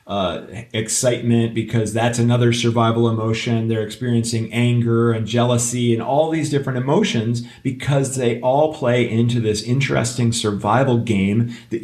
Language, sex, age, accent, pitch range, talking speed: English, male, 40-59, American, 110-140 Hz, 135 wpm